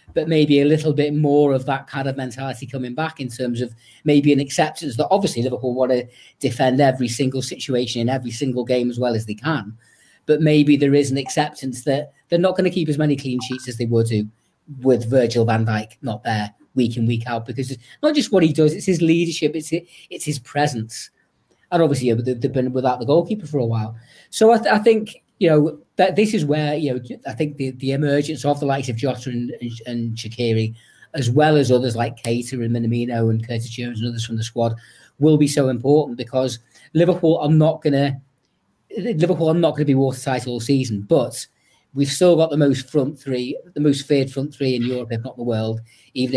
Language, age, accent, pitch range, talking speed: English, 30-49, British, 120-150 Hz, 215 wpm